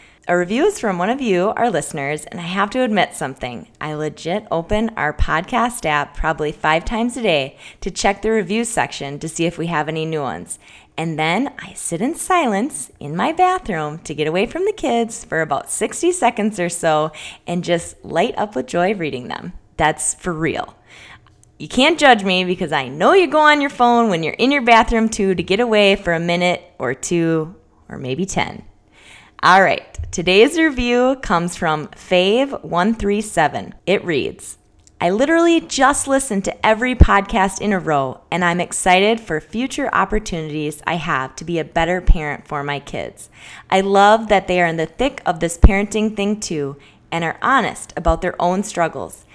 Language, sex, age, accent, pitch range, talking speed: English, female, 20-39, American, 160-230 Hz, 190 wpm